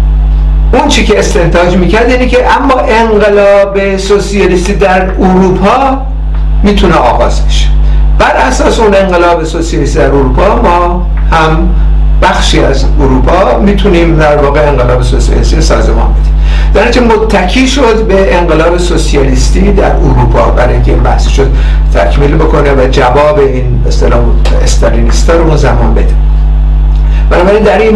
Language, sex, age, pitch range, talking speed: Persian, male, 60-79, 125-190 Hz, 125 wpm